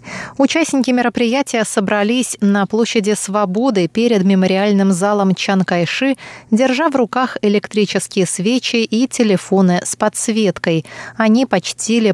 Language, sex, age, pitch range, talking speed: Russian, female, 20-39, 185-225 Hz, 105 wpm